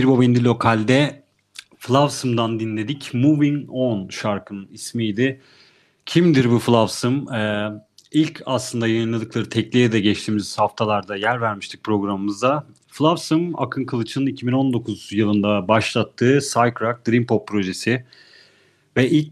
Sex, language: male, Turkish